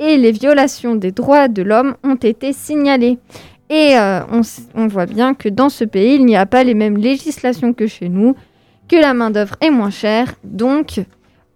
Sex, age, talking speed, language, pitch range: female, 20-39, 190 wpm, French, 230-290 Hz